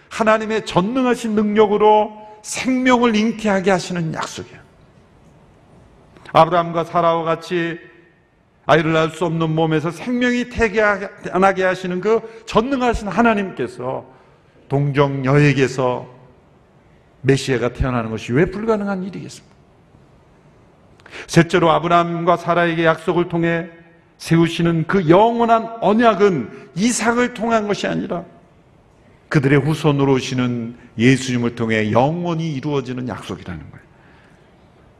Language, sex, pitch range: Korean, male, 165-210 Hz